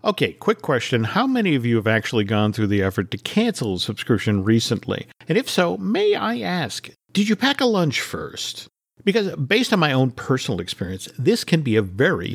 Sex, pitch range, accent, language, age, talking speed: male, 110-175 Hz, American, English, 50-69, 205 wpm